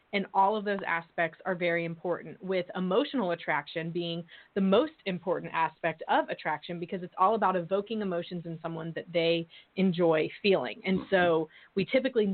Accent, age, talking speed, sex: American, 20-39, 165 wpm, female